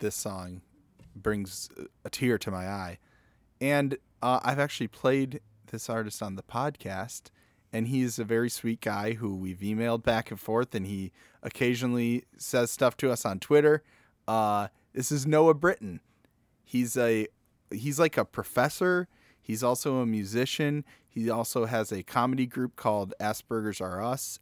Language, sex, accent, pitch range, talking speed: English, male, American, 105-125 Hz, 155 wpm